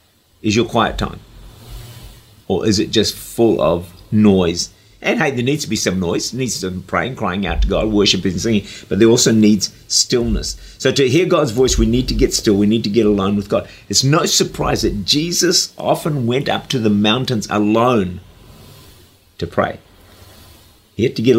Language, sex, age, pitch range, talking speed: English, male, 50-69, 95-115 Hz, 200 wpm